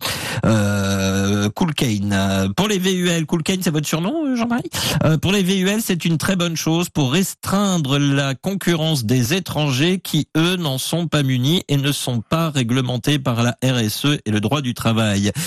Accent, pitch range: French, 115-155 Hz